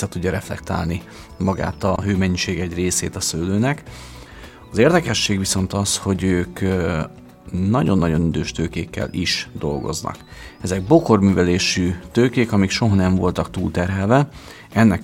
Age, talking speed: 40-59, 120 wpm